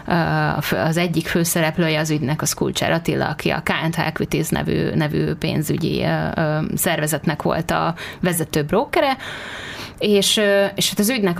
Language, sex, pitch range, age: Hungarian, female, 155-185 Hz, 30-49